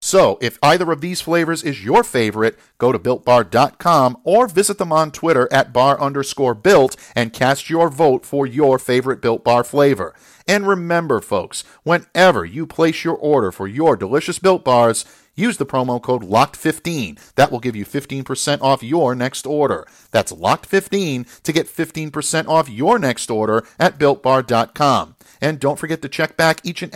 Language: English